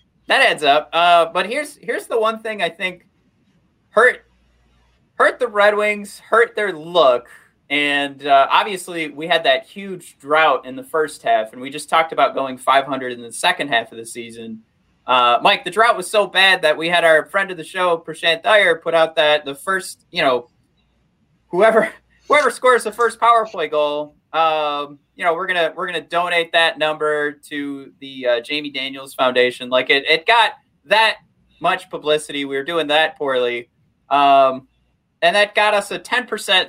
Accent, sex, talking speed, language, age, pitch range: American, male, 185 wpm, English, 30-49, 135-185 Hz